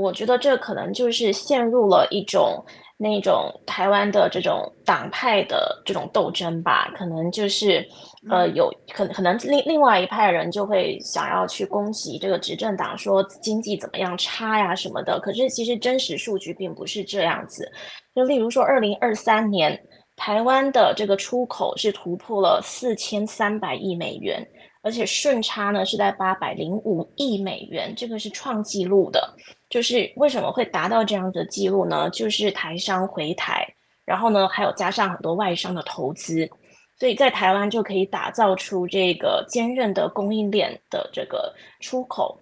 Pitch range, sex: 190-235 Hz, female